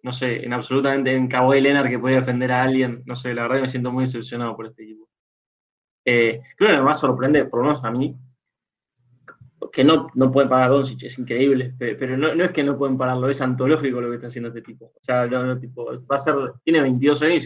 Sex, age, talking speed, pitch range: male, 20-39, 235 wpm, 125-135 Hz